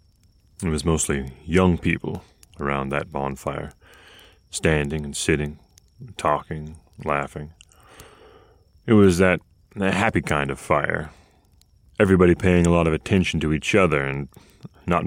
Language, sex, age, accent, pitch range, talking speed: English, male, 30-49, American, 75-95 Hz, 125 wpm